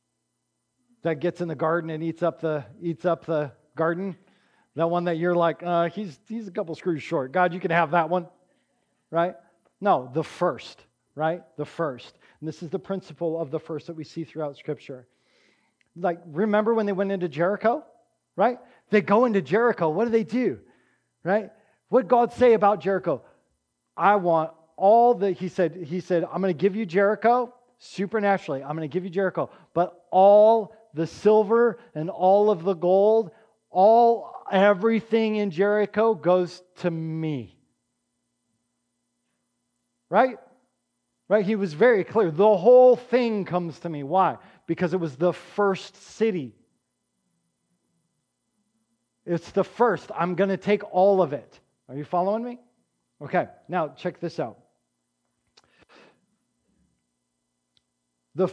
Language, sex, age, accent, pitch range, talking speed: English, male, 40-59, American, 160-210 Hz, 155 wpm